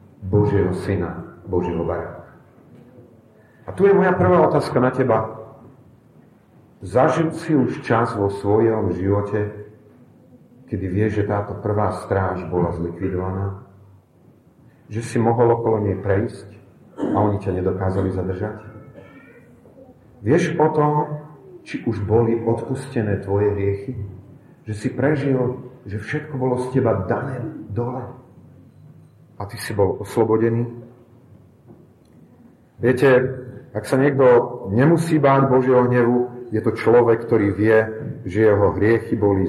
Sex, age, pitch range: male, 40-59, 100-130 Hz